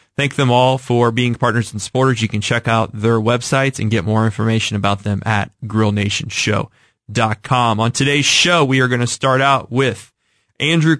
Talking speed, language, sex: 180 wpm, English, male